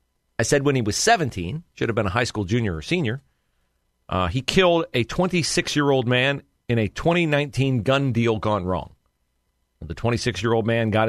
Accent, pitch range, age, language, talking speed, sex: American, 95-140 Hz, 40-59, English, 175 wpm, male